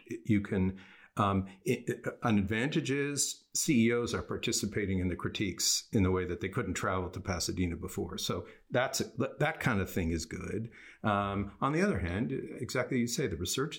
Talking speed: 185 wpm